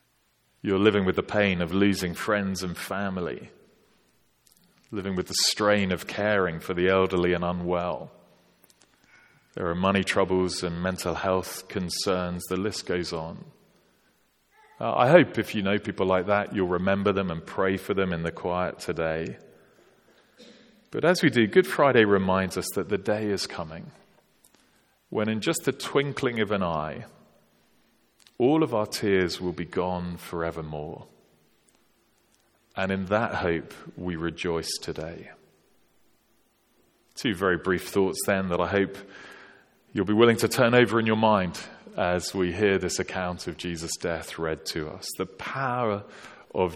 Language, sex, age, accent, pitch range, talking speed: English, male, 30-49, British, 90-105 Hz, 155 wpm